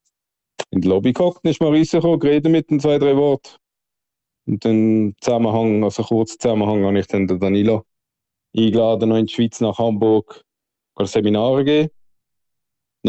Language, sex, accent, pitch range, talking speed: English, male, Austrian, 105-135 Hz, 160 wpm